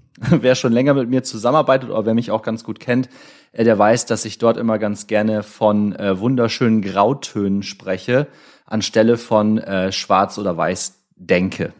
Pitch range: 105-125 Hz